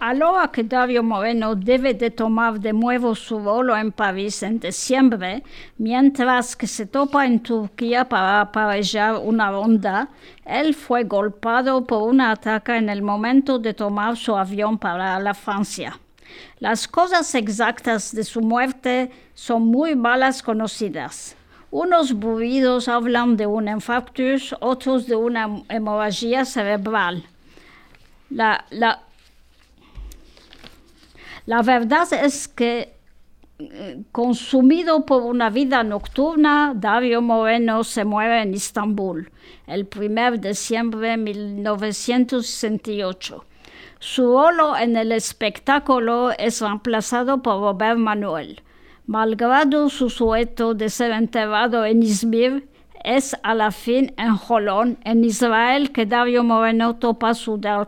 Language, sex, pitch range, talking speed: French, female, 215-255 Hz, 120 wpm